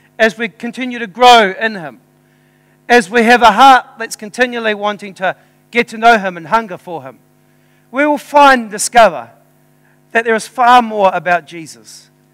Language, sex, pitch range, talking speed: English, male, 190-245 Hz, 175 wpm